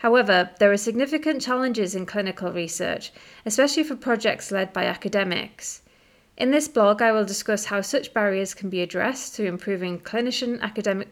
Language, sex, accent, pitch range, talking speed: English, female, British, 190-235 Hz, 155 wpm